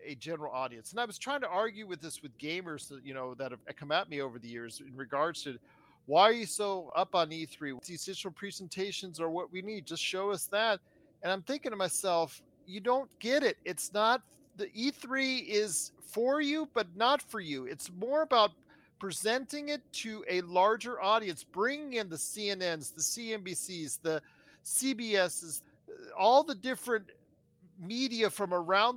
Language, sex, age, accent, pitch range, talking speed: English, male, 40-59, American, 165-225 Hz, 180 wpm